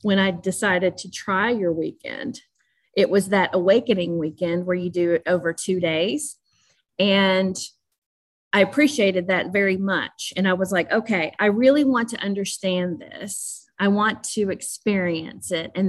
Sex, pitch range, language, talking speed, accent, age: female, 190-240 Hz, English, 160 wpm, American, 30-49